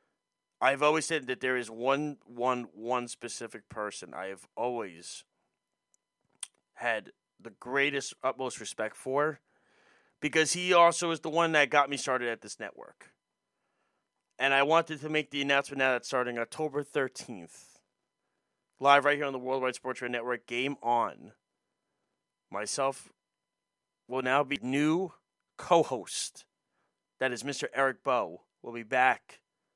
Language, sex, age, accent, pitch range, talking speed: English, male, 30-49, American, 130-150 Hz, 140 wpm